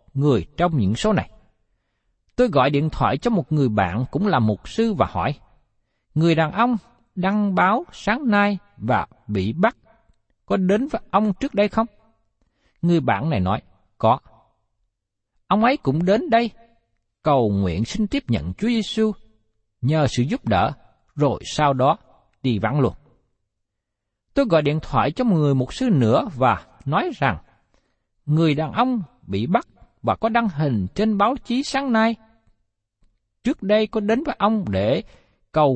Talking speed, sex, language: 165 wpm, male, Vietnamese